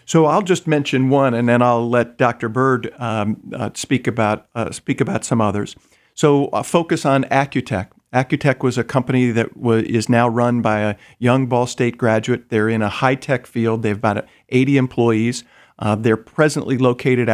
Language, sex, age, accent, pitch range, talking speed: English, male, 50-69, American, 120-140 Hz, 185 wpm